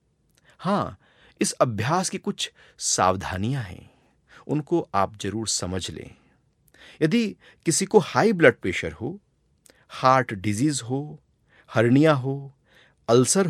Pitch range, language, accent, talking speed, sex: 115-180 Hz, Hindi, native, 110 wpm, male